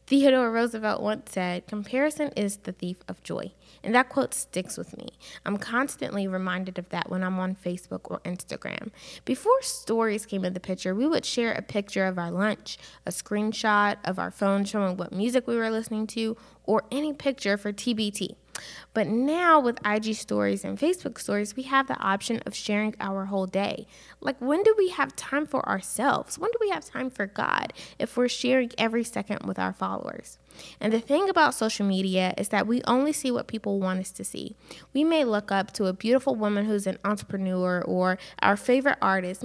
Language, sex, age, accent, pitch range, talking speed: English, female, 20-39, American, 195-260 Hz, 200 wpm